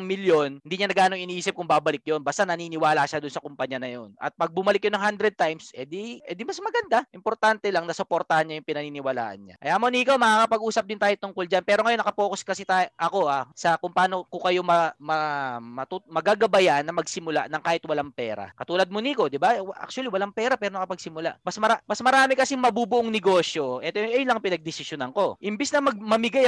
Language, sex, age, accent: Filipino, male, 20-39, native